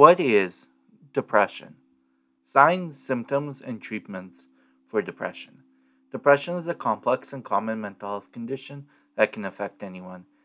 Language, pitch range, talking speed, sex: English, 100-145 Hz, 125 wpm, male